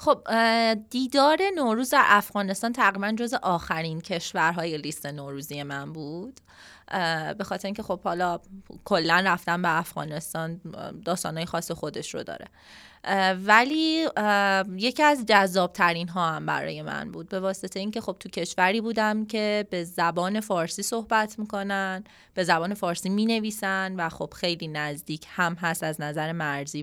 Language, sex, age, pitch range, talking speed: Persian, female, 20-39, 170-215 Hz, 140 wpm